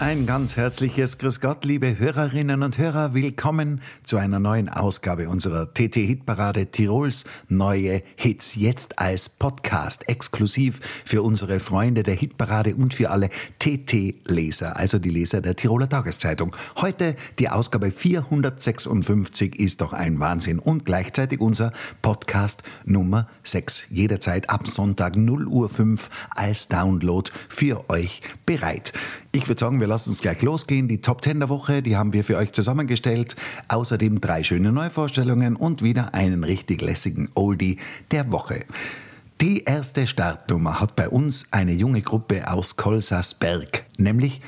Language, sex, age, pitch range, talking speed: German, male, 60-79, 95-130 Hz, 140 wpm